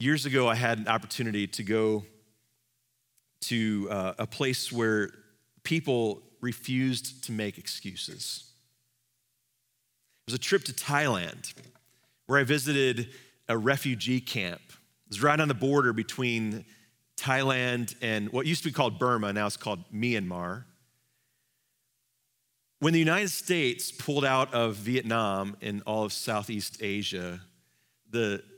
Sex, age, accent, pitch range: male, 40-59, American, 115-140 Hz